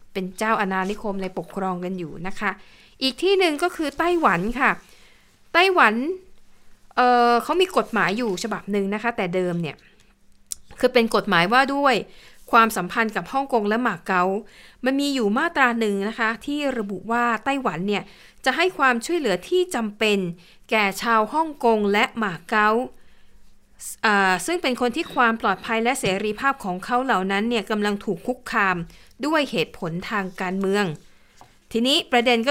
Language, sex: Thai, female